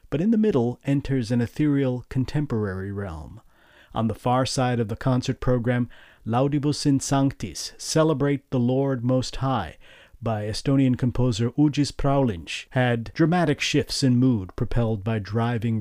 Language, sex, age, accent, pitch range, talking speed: English, male, 40-59, American, 115-140 Hz, 145 wpm